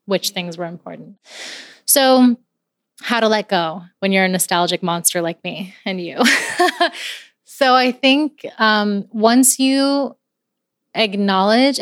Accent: American